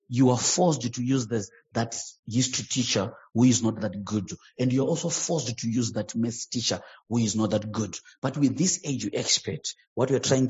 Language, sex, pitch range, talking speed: English, male, 105-135 Hz, 210 wpm